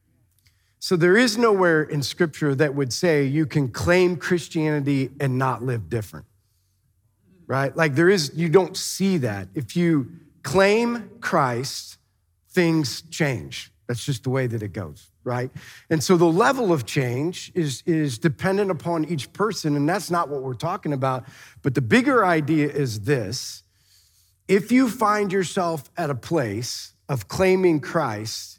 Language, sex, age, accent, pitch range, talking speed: English, male, 40-59, American, 125-170 Hz, 155 wpm